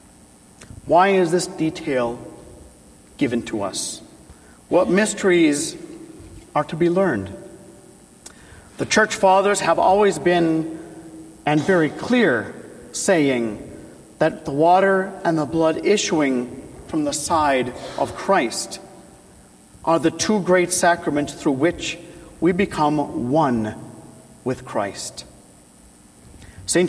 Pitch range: 155-195 Hz